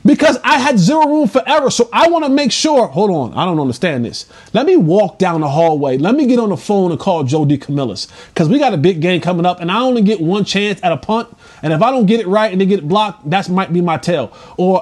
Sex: male